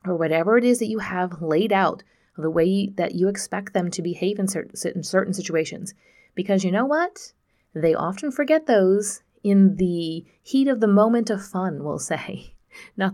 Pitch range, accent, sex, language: 165-215 Hz, American, female, English